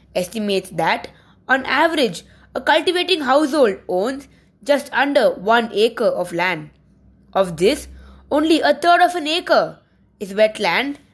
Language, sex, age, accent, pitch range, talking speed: English, female, 20-39, Indian, 200-275 Hz, 130 wpm